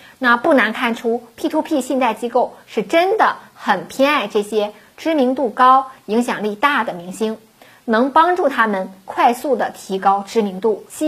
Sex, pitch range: female, 195-275 Hz